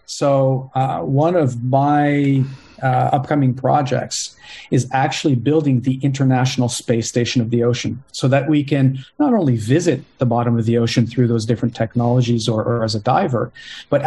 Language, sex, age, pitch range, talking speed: English, male, 40-59, 120-140 Hz, 170 wpm